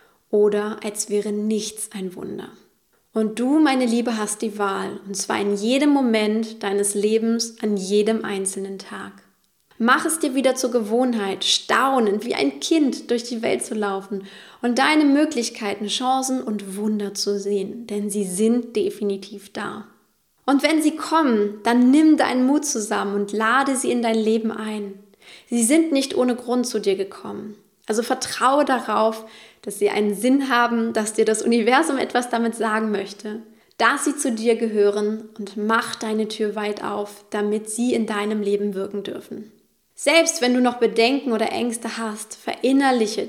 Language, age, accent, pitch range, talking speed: German, 20-39, German, 205-245 Hz, 165 wpm